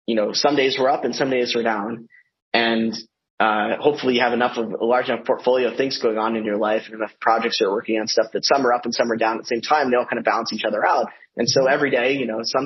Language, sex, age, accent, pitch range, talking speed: English, male, 20-39, American, 110-130 Hz, 305 wpm